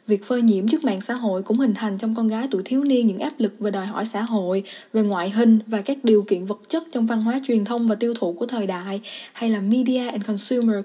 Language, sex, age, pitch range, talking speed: Vietnamese, female, 20-39, 210-245 Hz, 270 wpm